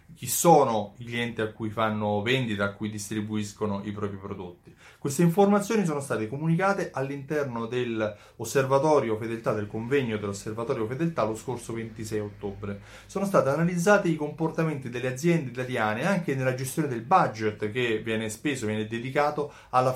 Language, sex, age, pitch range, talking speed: Italian, male, 30-49, 105-135 Hz, 150 wpm